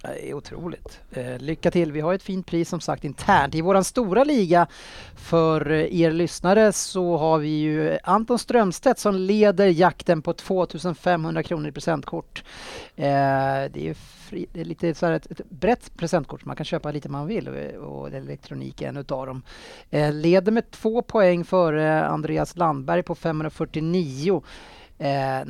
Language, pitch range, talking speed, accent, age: Swedish, 140-185 Hz, 160 wpm, Norwegian, 30-49